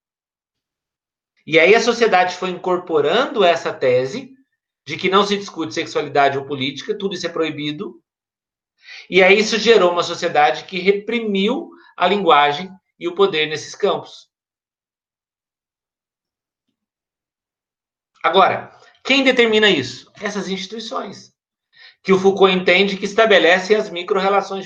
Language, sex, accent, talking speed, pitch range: Portuguese, male, Brazilian, 120 wpm, 175-235 Hz